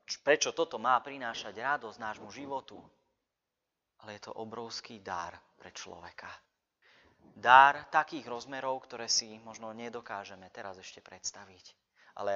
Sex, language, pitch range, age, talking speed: male, Slovak, 100-130 Hz, 30-49, 120 wpm